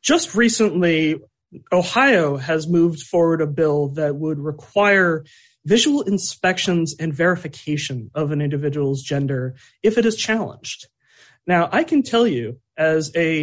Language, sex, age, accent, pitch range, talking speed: English, male, 30-49, American, 145-190 Hz, 135 wpm